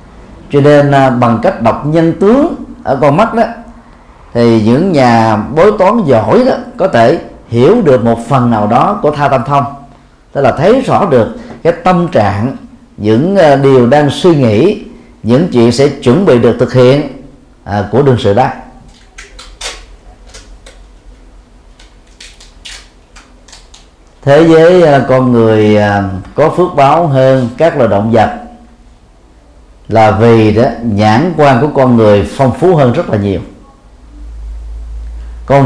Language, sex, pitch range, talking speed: Vietnamese, male, 100-145 Hz, 135 wpm